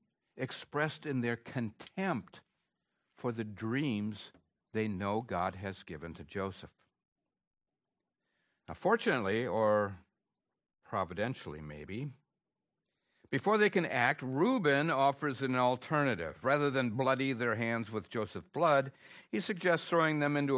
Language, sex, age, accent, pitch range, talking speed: English, male, 60-79, American, 110-145 Hz, 115 wpm